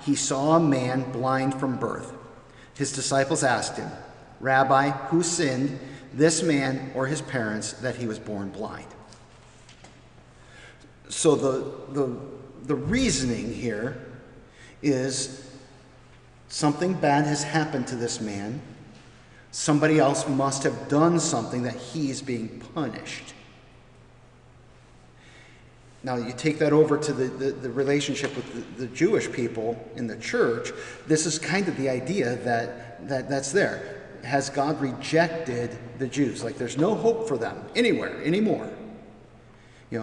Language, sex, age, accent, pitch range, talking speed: English, male, 40-59, American, 125-150 Hz, 135 wpm